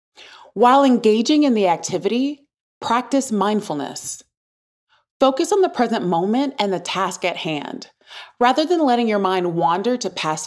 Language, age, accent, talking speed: English, 30-49, American, 145 wpm